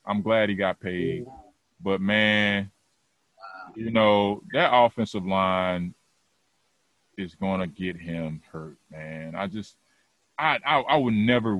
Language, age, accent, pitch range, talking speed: English, 30-49, American, 95-140 Hz, 135 wpm